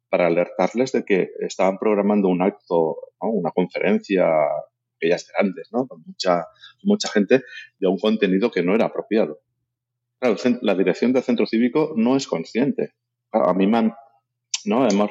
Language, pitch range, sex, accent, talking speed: Spanish, 95-125 Hz, male, Spanish, 160 wpm